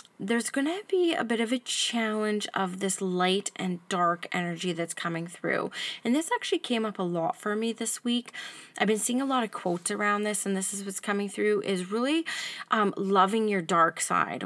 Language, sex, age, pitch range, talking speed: English, female, 20-39, 180-225 Hz, 210 wpm